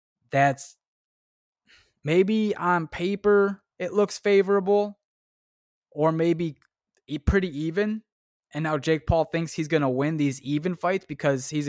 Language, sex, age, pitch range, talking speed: English, male, 20-39, 130-160 Hz, 125 wpm